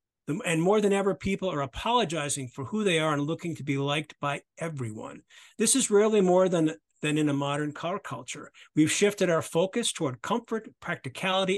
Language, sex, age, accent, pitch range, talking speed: English, male, 50-69, American, 140-190 Hz, 185 wpm